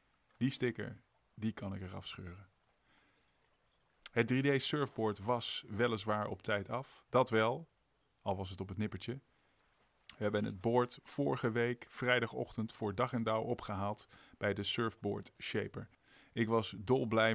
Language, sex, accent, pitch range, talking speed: Dutch, male, Dutch, 100-120 Hz, 145 wpm